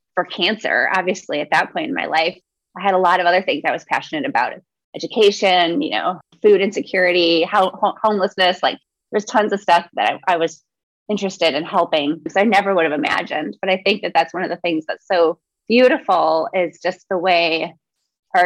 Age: 20-39